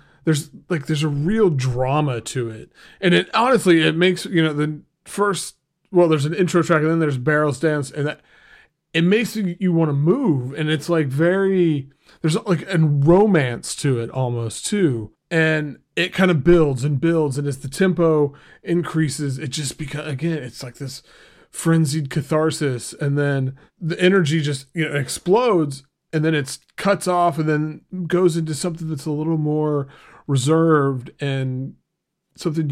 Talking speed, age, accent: 170 wpm, 30-49, American